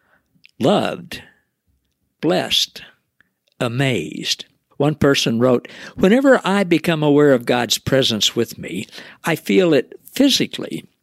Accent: American